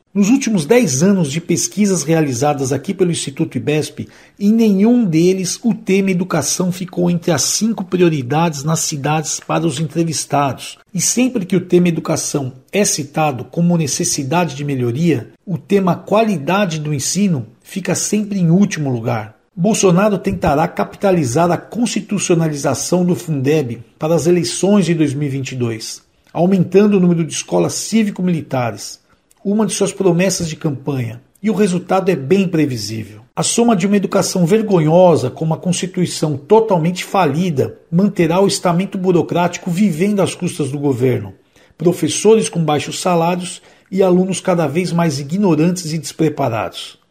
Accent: Brazilian